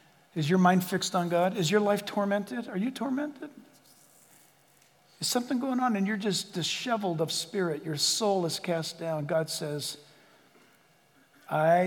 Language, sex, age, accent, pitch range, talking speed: English, male, 50-69, American, 160-190 Hz, 155 wpm